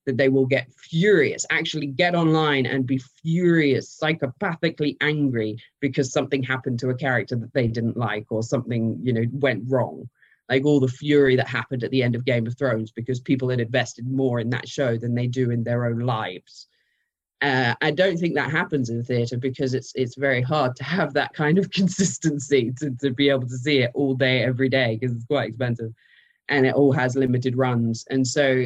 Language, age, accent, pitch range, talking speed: English, 20-39, British, 120-140 Hz, 205 wpm